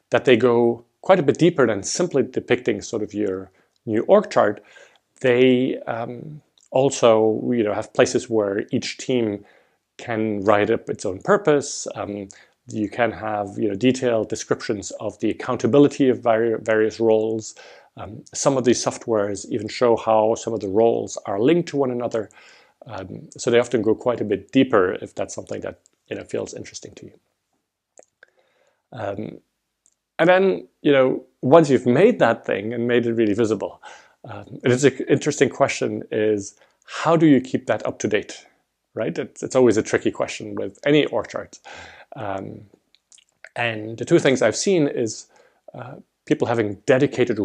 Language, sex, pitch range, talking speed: English, male, 105-130 Hz, 160 wpm